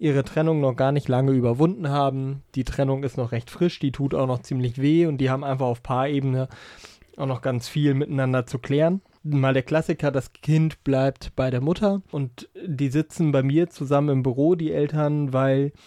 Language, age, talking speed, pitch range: German, 30-49, 200 wpm, 135-155 Hz